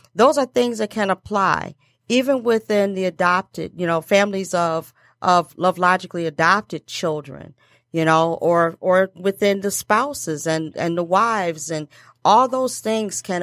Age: 40-59